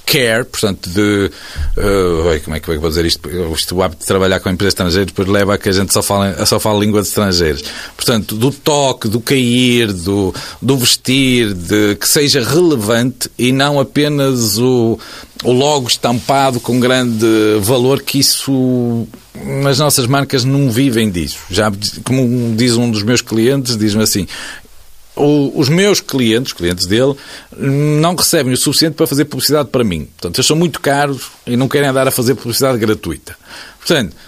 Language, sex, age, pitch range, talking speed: Portuguese, male, 50-69, 105-140 Hz, 175 wpm